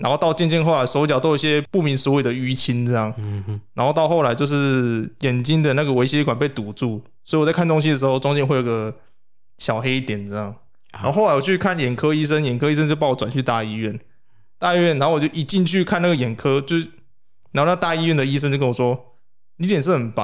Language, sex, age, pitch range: Chinese, male, 20-39, 120-150 Hz